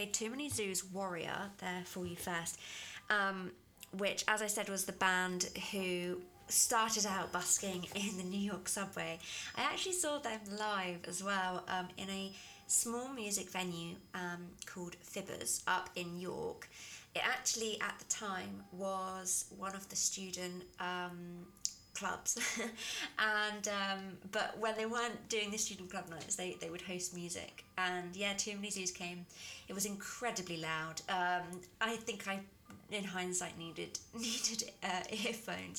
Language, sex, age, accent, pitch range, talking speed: English, female, 20-39, British, 180-210 Hz, 155 wpm